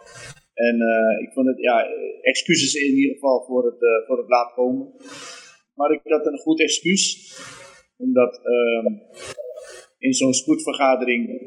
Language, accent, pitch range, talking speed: Dutch, Dutch, 125-165 Hz, 145 wpm